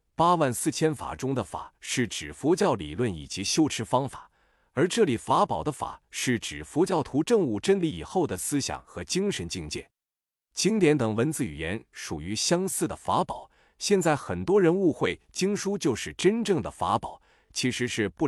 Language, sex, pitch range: Chinese, male, 105-155 Hz